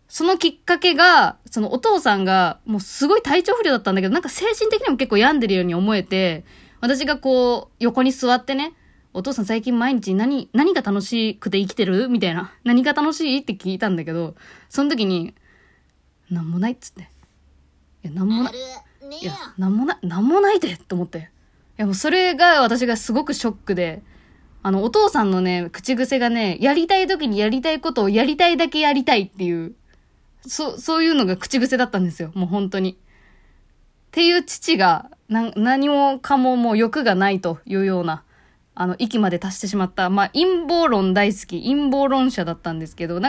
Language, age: Japanese, 20-39